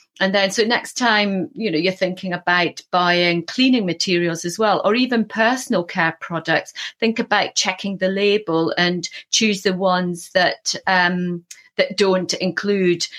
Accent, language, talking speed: British, English, 155 wpm